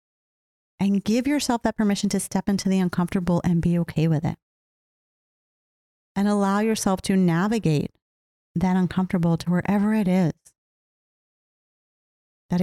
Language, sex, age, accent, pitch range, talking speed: English, female, 30-49, American, 180-225 Hz, 130 wpm